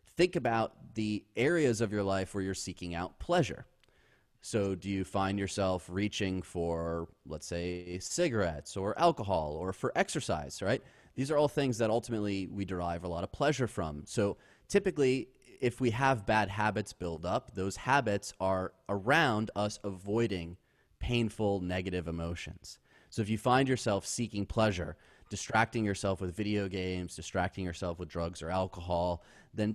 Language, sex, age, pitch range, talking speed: English, male, 30-49, 90-115 Hz, 155 wpm